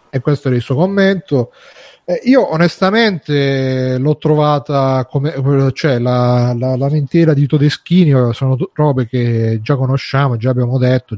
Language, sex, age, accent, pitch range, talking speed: Italian, male, 30-49, native, 125-150 Hz, 145 wpm